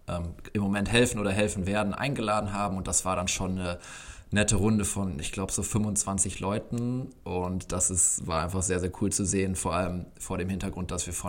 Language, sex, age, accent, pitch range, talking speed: German, male, 20-39, German, 90-100 Hz, 215 wpm